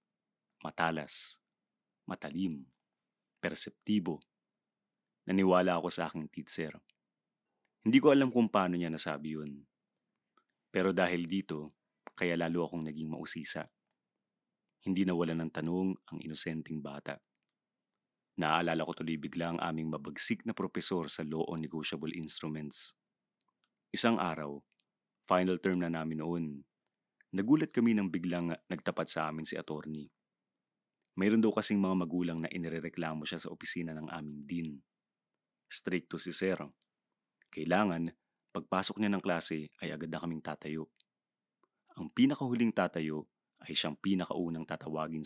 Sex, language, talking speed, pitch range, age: male, English, 125 wpm, 80-90 Hz, 30-49